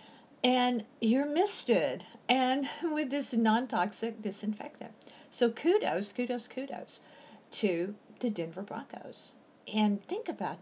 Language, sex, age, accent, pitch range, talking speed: English, female, 50-69, American, 205-255 Hz, 105 wpm